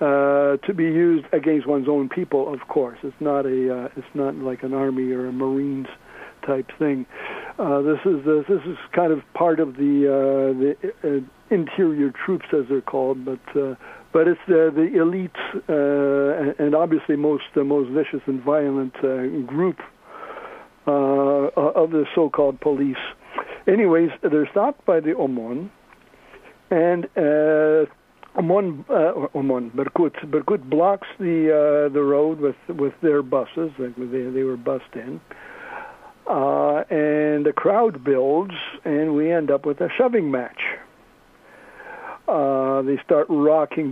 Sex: male